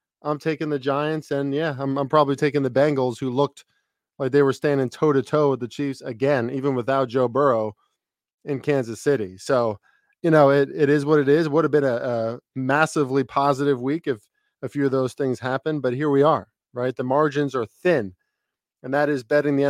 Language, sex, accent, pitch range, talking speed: English, male, American, 125-145 Hz, 210 wpm